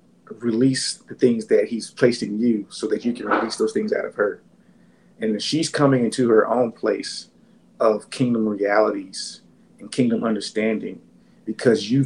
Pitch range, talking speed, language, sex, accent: 110-130 Hz, 165 wpm, English, male, American